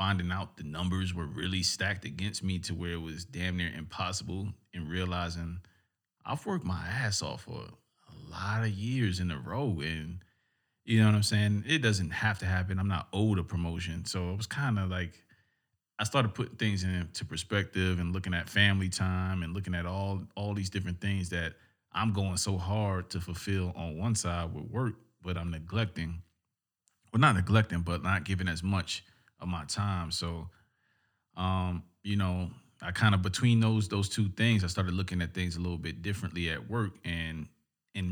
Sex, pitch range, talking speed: male, 90-105 Hz, 195 wpm